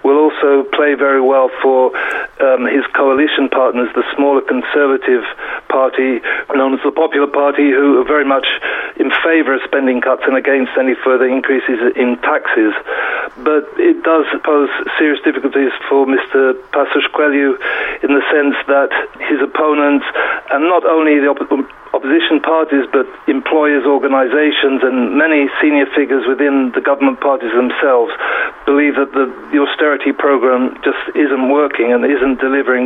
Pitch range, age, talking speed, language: 135-150 Hz, 40-59, 150 wpm, English